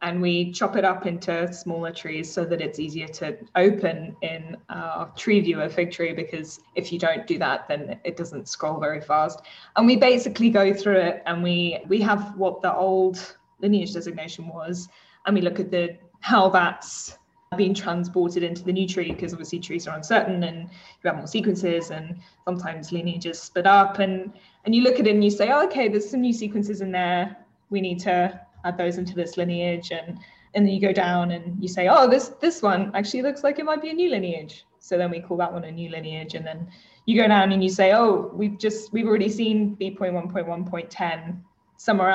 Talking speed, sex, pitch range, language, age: 210 wpm, female, 170-205 Hz, English, 20-39